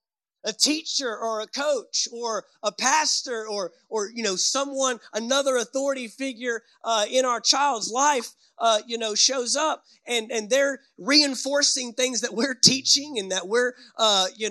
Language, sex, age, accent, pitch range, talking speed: English, male, 30-49, American, 190-270 Hz, 160 wpm